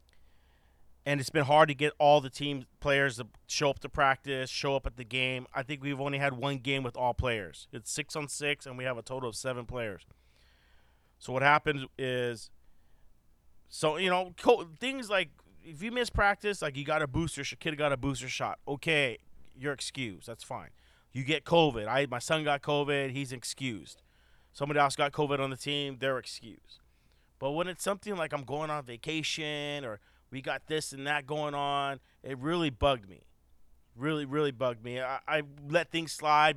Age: 30-49